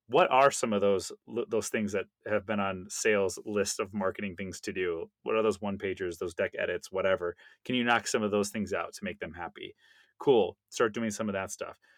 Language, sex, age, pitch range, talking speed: English, male, 30-49, 105-140 Hz, 225 wpm